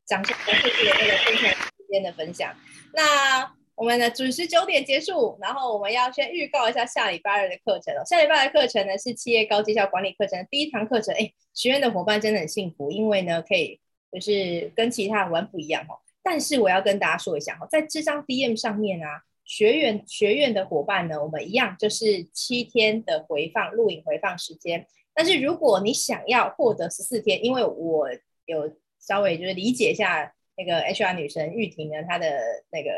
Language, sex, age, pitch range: Chinese, female, 20-39, 185-260 Hz